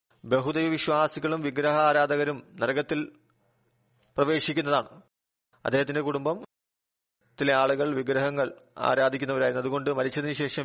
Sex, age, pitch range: male, 40-59, 135-155 Hz